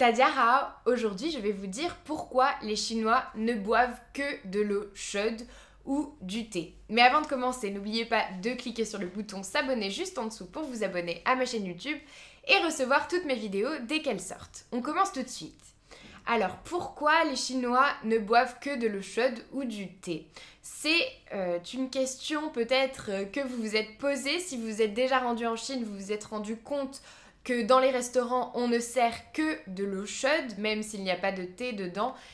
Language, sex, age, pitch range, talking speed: French, female, 20-39, 210-265 Hz, 195 wpm